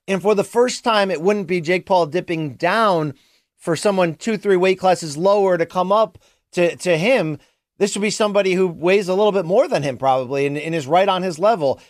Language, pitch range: English, 165-215 Hz